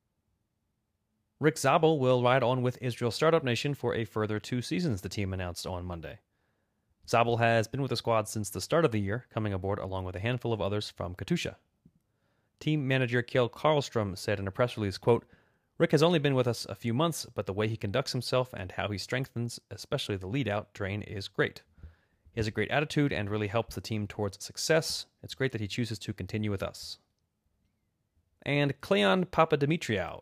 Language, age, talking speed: English, 30-49, 200 wpm